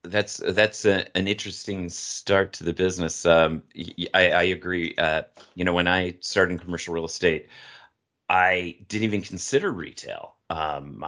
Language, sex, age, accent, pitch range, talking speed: English, male, 30-49, American, 85-105 Hz, 150 wpm